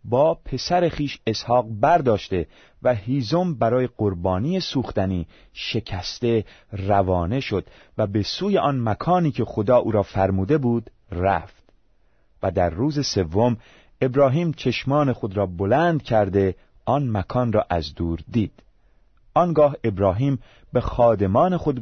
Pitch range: 100-150 Hz